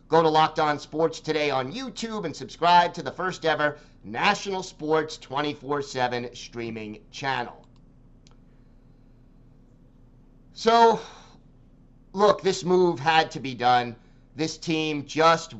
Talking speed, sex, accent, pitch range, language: 115 wpm, male, American, 130-175 Hz, English